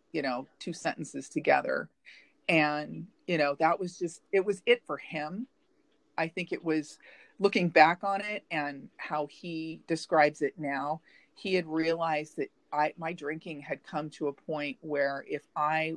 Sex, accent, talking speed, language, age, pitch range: female, American, 170 wpm, English, 40-59, 150-180 Hz